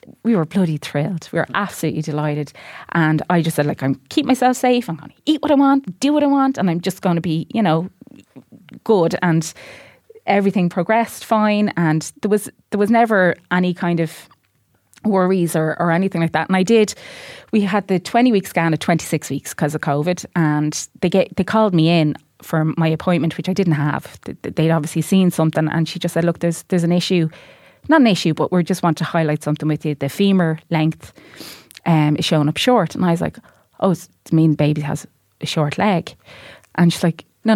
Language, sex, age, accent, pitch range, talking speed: English, female, 20-39, Irish, 160-195 Hz, 215 wpm